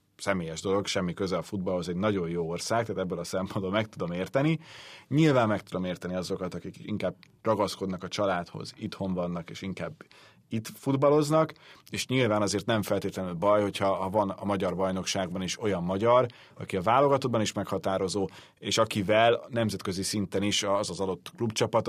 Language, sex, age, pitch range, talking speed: Hungarian, male, 30-49, 95-115 Hz, 165 wpm